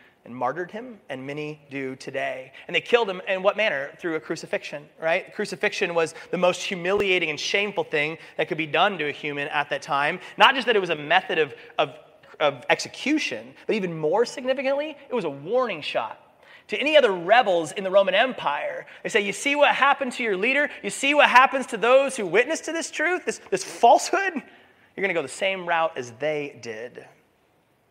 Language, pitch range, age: English, 150-230 Hz, 30-49